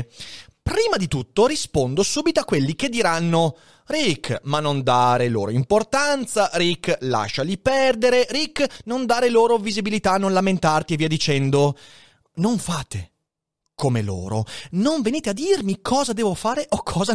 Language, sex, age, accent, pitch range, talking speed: Italian, male, 30-49, native, 135-205 Hz, 145 wpm